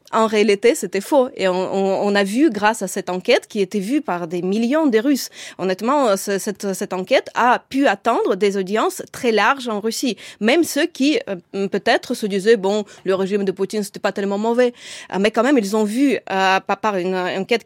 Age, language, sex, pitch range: 30-49, French, female, 190-235 Hz